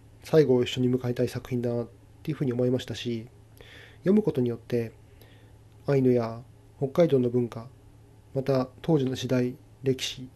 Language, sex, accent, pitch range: Japanese, male, native, 110-135 Hz